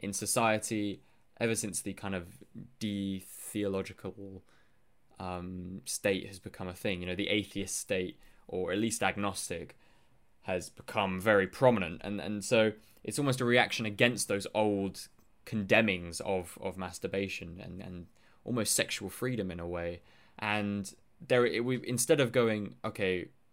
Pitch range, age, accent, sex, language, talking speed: 95-120 Hz, 20-39, British, male, English, 145 wpm